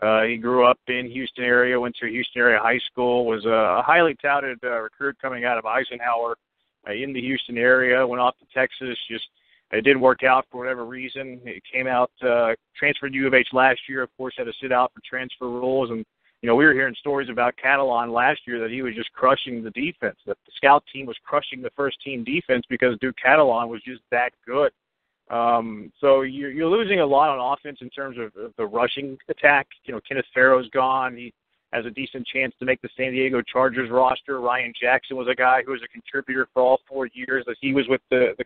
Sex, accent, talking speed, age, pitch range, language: male, American, 230 wpm, 50-69, 125-140 Hz, English